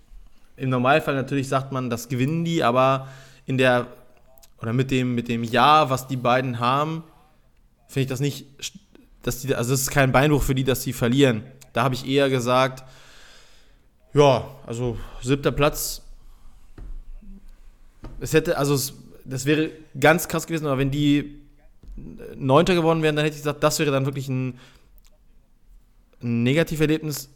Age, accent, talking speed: 20-39, German, 160 wpm